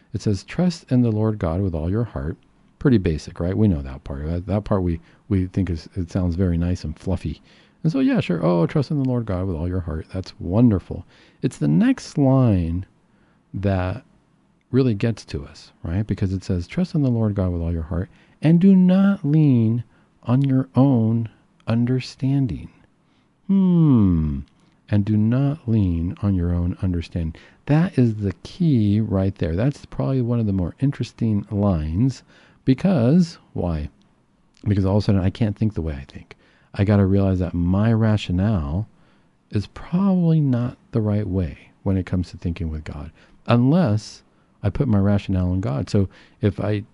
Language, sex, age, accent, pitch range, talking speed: English, male, 50-69, American, 90-130 Hz, 185 wpm